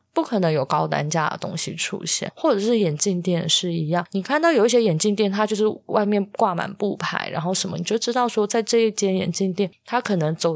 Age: 20-39